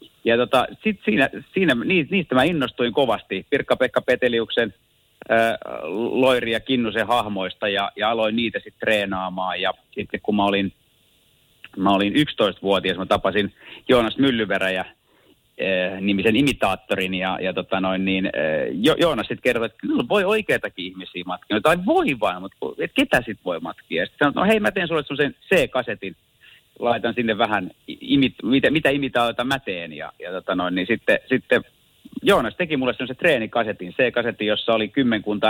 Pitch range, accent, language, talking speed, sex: 100-130 Hz, native, Finnish, 155 wpm, male